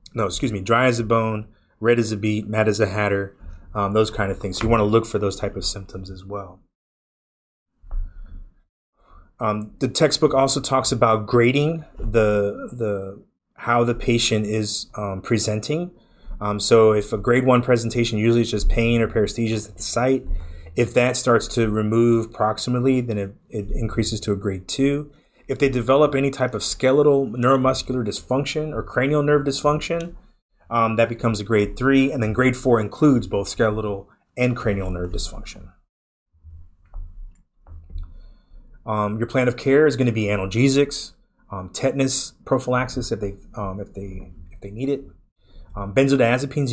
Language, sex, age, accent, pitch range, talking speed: English, male, 30-49, American, 100-125 Hz, 170 wpm